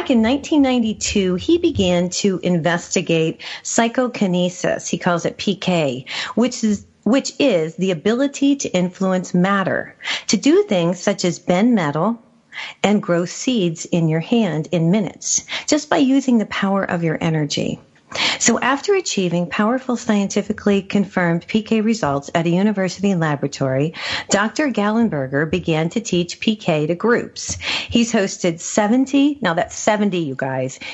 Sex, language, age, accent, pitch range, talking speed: female, English, 40-59, American, 170-225 Hz, 140 wpm